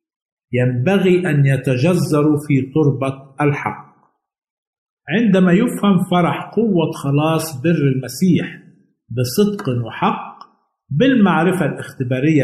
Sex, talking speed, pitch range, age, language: male, 80 wpm, 140-180 Hz, 50-69, Arabic